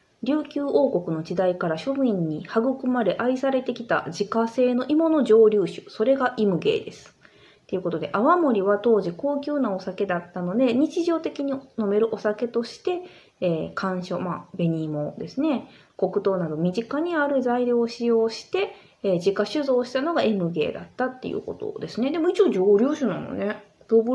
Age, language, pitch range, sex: 20-39, Japanese, 190-265 Hz, female